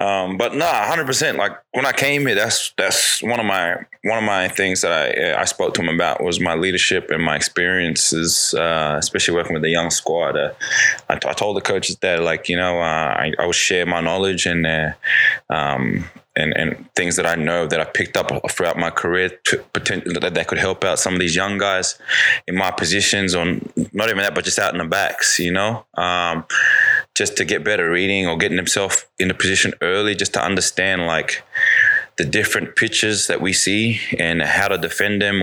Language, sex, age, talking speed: English, male, 20-39, 215 wpm